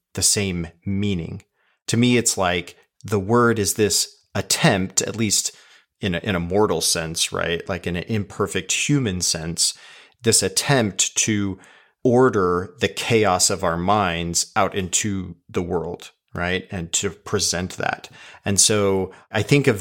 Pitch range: 90-110 Hz